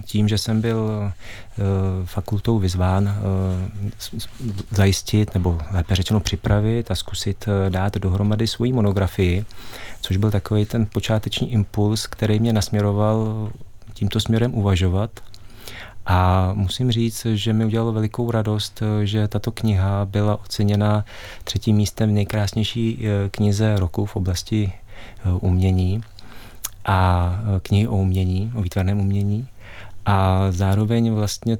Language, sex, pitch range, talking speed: Czech, male, 95-110 Hz, 115 wpm